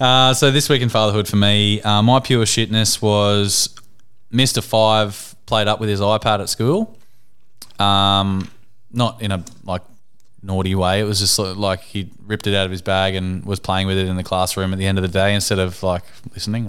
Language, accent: English, Australian